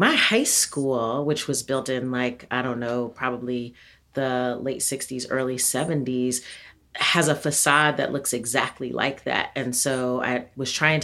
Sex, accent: female, American